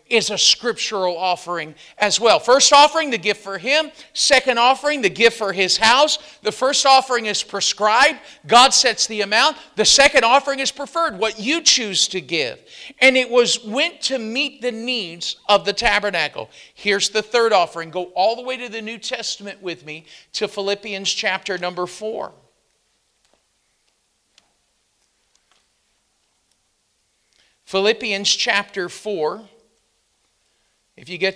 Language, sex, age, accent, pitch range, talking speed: English, male, 50-69, American, 195-255 Hz, 140 wpm